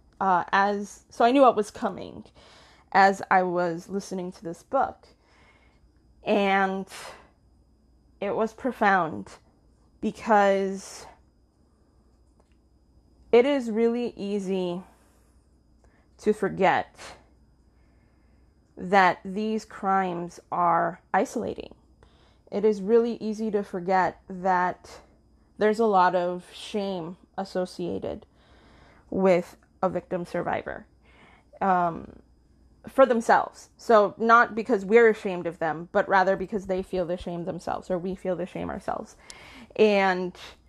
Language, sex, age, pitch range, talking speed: English, female, 20-39, 175-215 Hz, 105 wpm